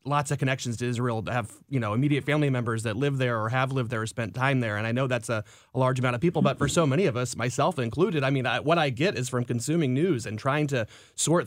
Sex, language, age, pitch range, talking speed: male, English, 30-49, 110-130 Hz, 290 wpm